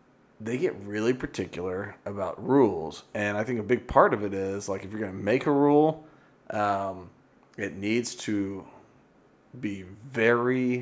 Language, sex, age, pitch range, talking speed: English, male, 30-49, 100-115 Hz, 160 wpm